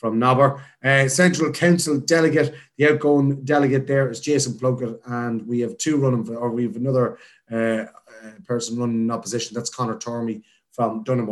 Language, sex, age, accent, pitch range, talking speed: English, male, 30-49, Irish, 115-145 Hz, 180 wpm